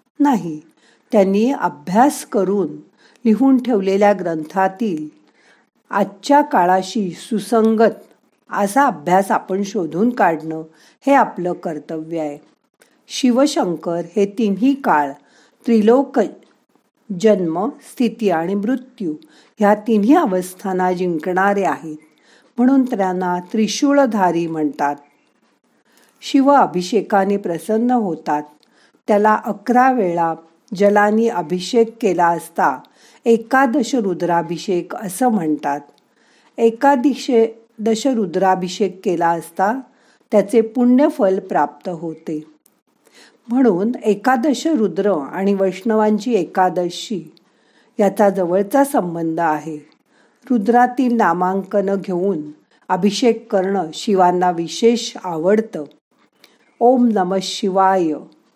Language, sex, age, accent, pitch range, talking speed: Marathi, female, 50-69, native, 180-240 Hz, 85 wpm